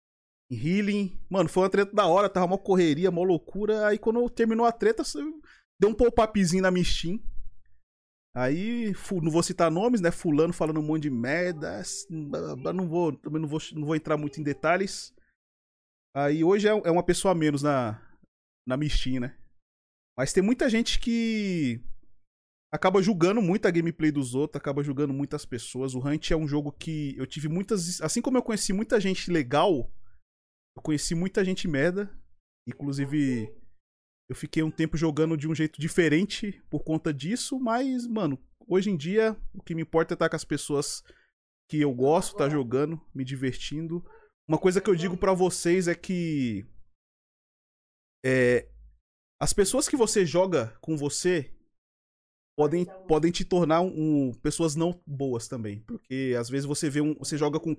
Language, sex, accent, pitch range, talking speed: Portuguese, male, Brazilian, 140-190 Hz, 170 wpm